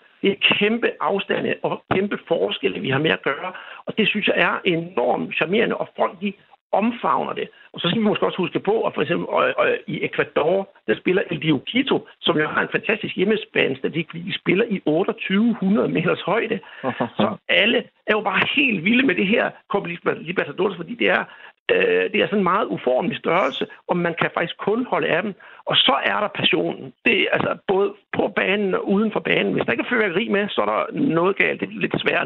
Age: 60-79